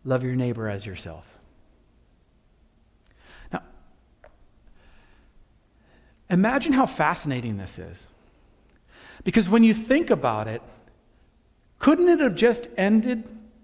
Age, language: 40-59, English